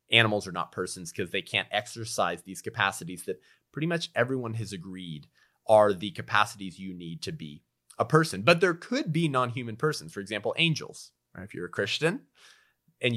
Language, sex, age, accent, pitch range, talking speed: English, male, 30-49, American, 105-130 Hz, 180 wpm